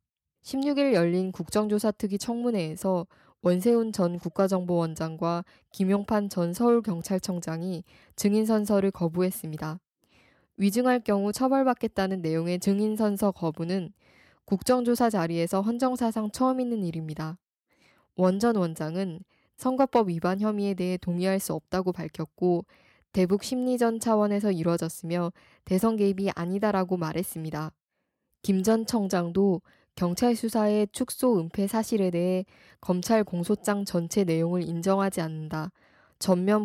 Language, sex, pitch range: Korean, female, 175-215 Hz